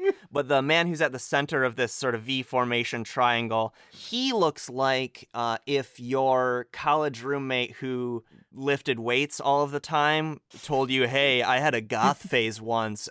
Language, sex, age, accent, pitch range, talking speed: English, male, 30-49, American, 120-150 Hz, 175 wpm